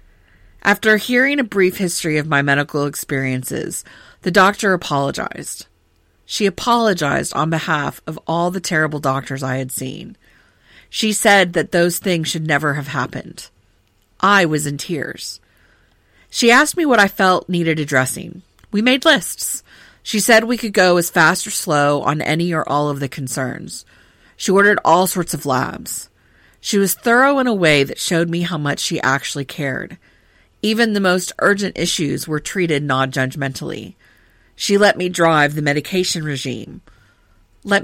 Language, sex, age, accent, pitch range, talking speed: English, female, 40-59, American, 140-190 Hz, 160 wpm